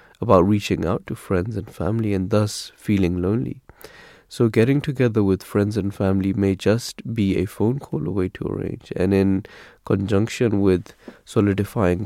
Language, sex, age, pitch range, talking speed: English, male, 20-39, 95-110 Hz, 170 wpm